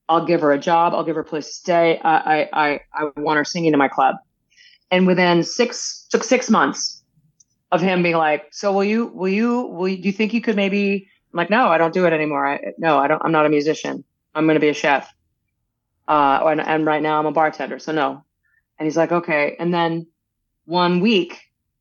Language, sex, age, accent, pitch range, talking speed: English, female, 30-49, American, 150-180 Hz, 230 wpm